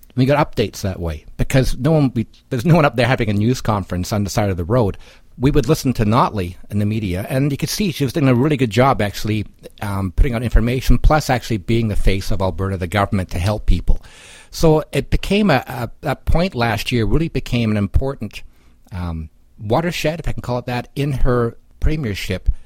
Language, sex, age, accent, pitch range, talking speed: English, male, 60-79, American, 95-130 Hz, 220 wpm